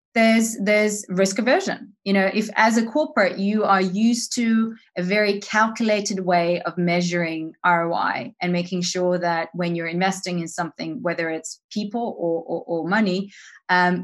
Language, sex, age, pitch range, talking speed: English, female, 30-49, 175-210 Hz, 165 wpm